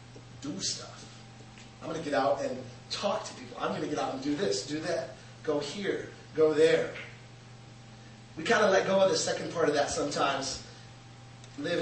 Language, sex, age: English, male, 30-49